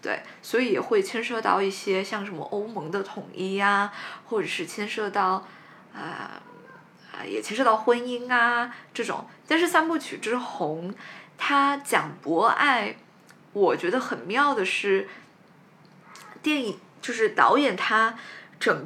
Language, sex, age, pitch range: Chinese, female, 20-39, 200-285 Hz